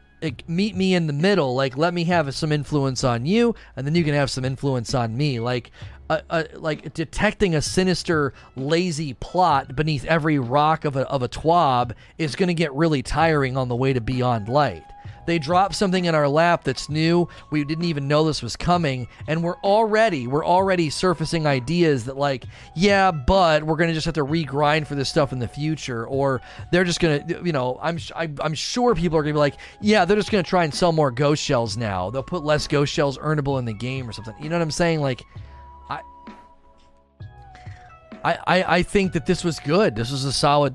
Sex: male